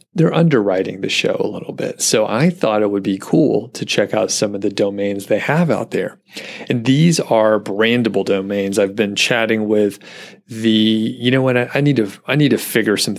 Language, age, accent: English, 30-49, American